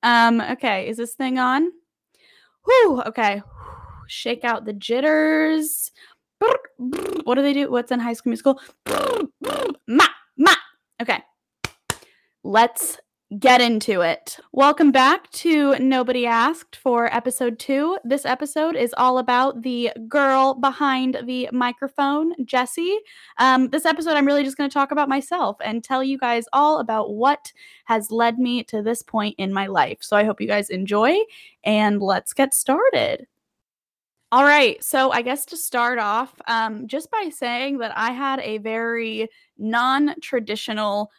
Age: 10-29